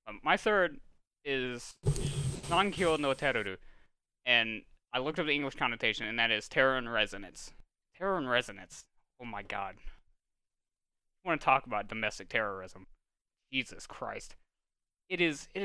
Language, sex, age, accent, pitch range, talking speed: English, male, 20-39, American, 105-150 Hz, 140 wpm